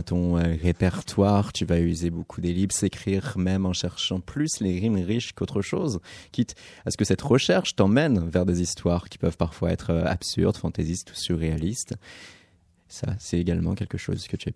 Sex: male